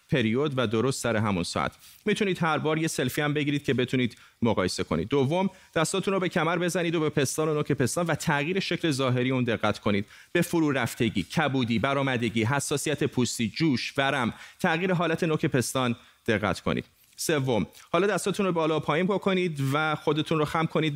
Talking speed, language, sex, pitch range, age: 180 wpm, Persian, male, 125-160 Hz, 30-49